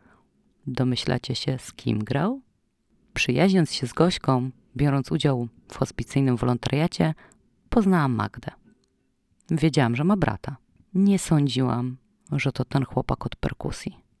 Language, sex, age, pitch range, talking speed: Polish, female, 30-49, 120-160 Hz, 120 wpm